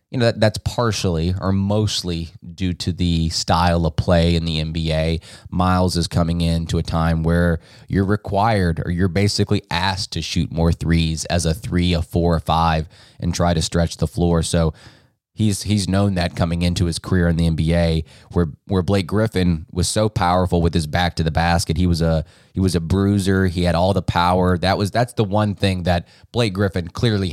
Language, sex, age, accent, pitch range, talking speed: English, male, 20-39, American, 85-100 Hz, 200 wpm